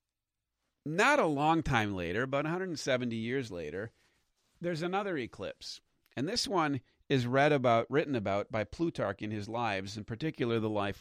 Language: English